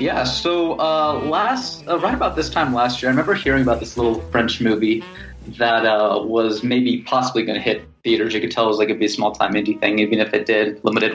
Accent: American